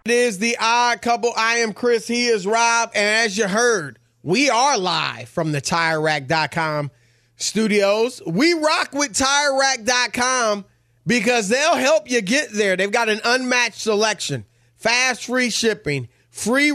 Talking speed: 145 wpm